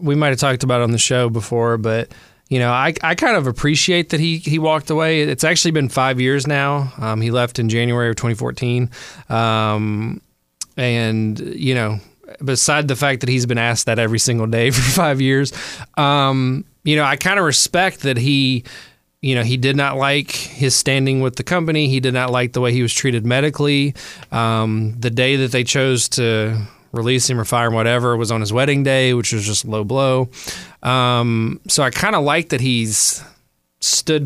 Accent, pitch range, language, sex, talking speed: American, 115-145 Hz, English, male, 205 wpm